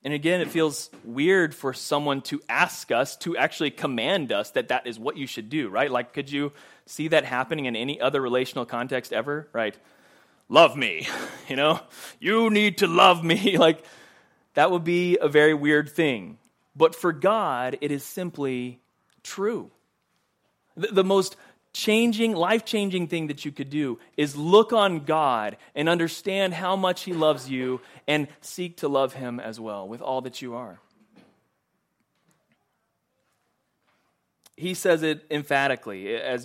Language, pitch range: English, 140-185 Hz